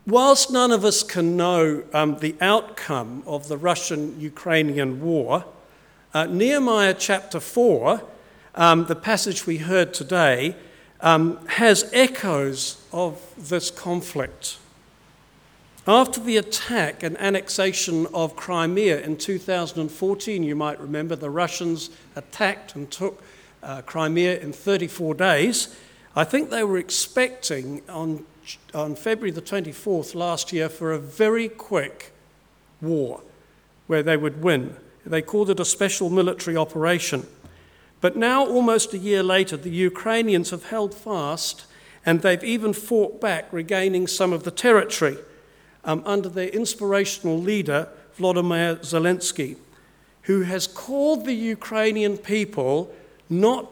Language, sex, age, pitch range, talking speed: English, male, 60-79, 160-205 Hz, 125 wpm